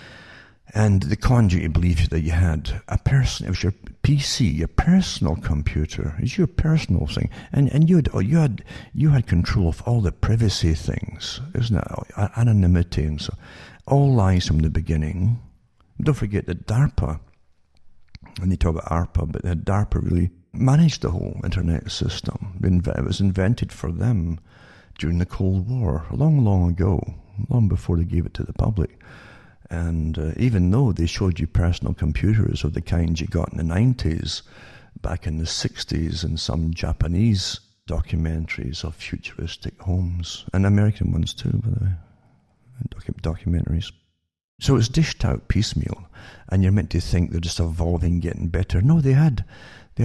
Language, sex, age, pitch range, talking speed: English, male, 60-79, 85-110 Hz, 165 wpm